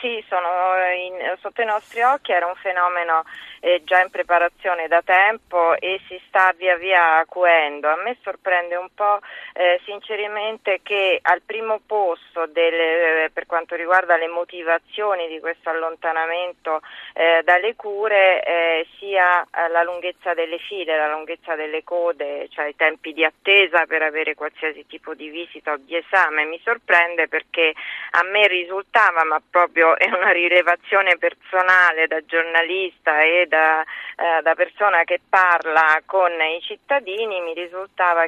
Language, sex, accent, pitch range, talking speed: Italian, female, native, 160-185 Hz, 150 wpm